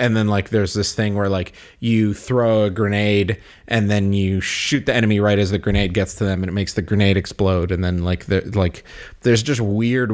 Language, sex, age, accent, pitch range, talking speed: English, male, 30-49, American, 95-115 Hz, 230 wpm